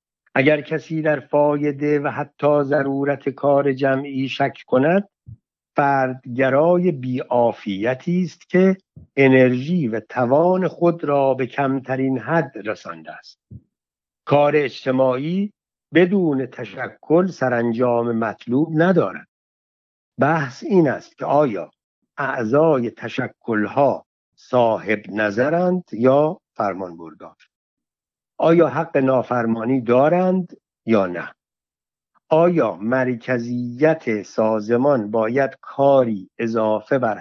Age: 60-79